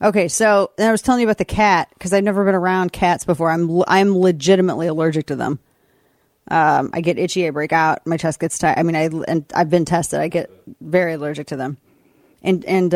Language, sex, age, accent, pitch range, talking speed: English, female, 30-49, American, 175-250 Hz, 225 wpm